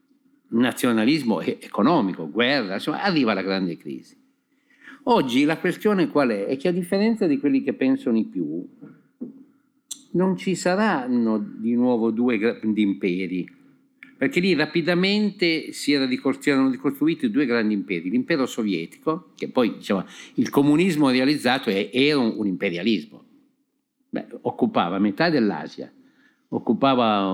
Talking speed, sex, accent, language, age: 125 wpm, male, native, Italian, 50-69